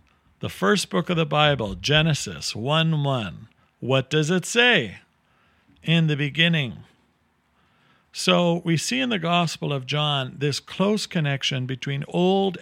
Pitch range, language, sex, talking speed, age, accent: 110-165 Hz, English, male, 135 wpm, 50-69, American